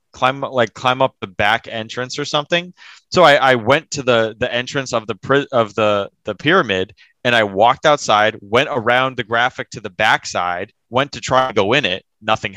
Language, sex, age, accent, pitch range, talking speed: English, male, 20-39, American, 115-150 Hz, 200 wpm